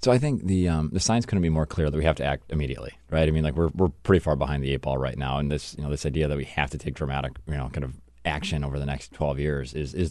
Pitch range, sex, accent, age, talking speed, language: 70-80 Hz, male, American, 30-49, 325 wpm, English